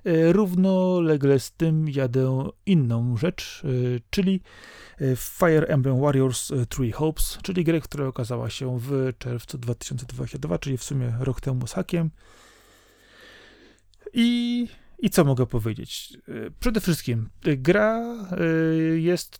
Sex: male